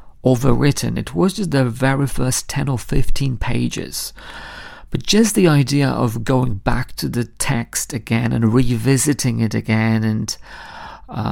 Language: English